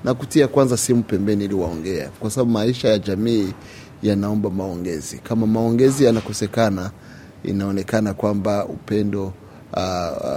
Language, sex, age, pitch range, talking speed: Swahili, male, 30-49, 100-115 Hz, 115 wpm